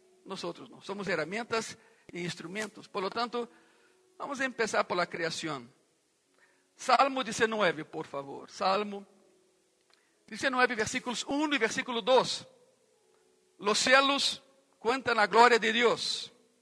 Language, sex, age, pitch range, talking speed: Spanish, male, 60-79, 195-280 Hz, 120 wpm